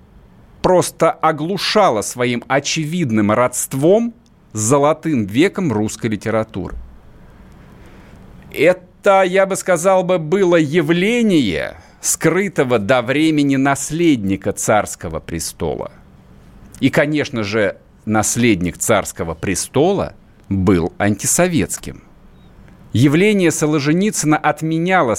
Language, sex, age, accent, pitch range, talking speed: Russian, male, 50-69, native, 115-175 Hz, 80 wpm